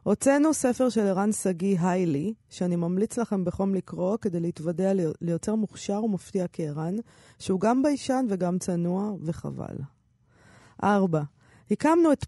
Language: Hebrew